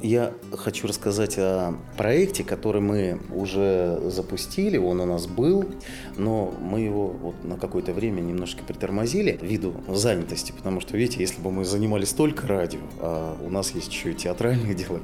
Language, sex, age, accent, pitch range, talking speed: Russian, male, 30-49, native, 90-125 Hz, 155 wpm